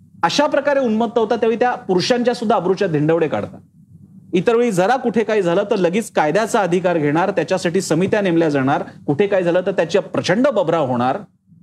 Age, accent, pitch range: 40-59, native, 195-245 Hz